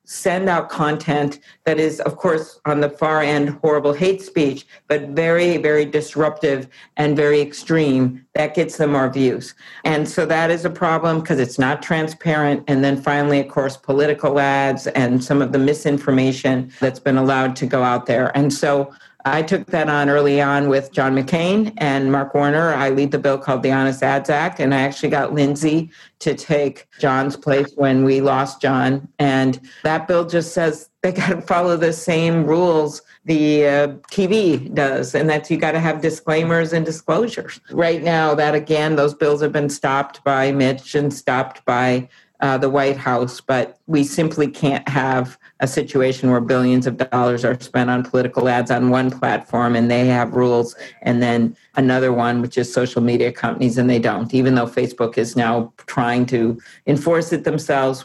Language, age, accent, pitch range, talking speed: English, 50-69, American, 130-155 Hz, 185 wpm